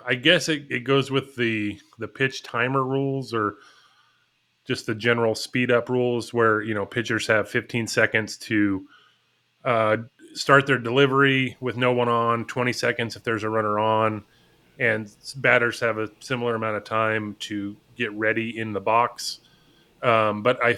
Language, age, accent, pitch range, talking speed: English, 30-49, American, 115-135 Hz, 170 wpm